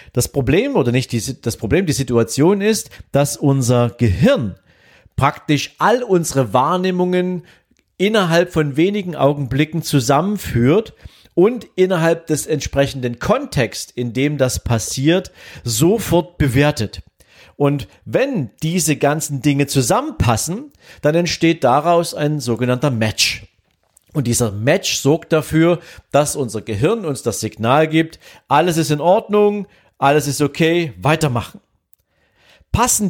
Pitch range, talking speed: 120-165 Hz, 120 wpm